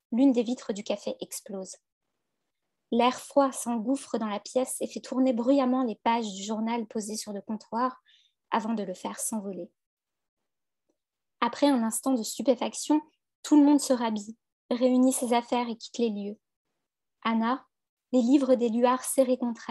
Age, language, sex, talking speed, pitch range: 20-39, French, female, 160 wpm, 225-255 Hz